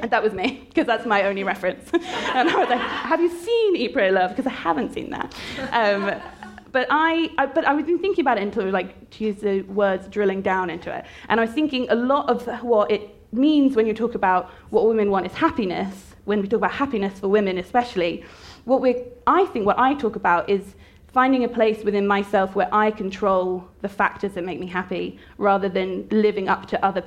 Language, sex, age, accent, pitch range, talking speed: English, female, 20-39, British, 185-235 Hz, 220 wpm